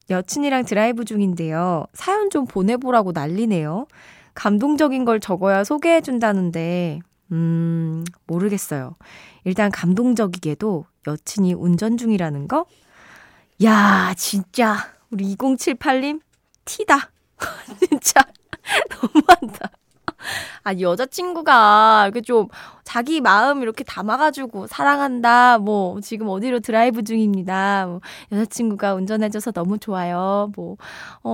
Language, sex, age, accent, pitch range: Korean, female, 20-39, native, 195-260 Hz